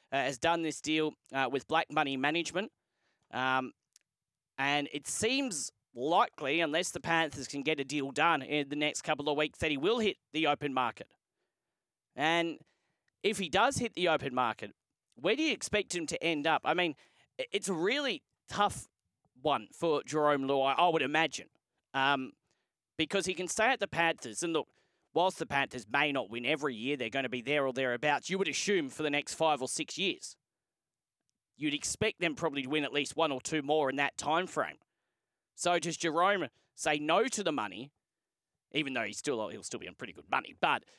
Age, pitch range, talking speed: 40-59, 145-175 Hz, 195 wpm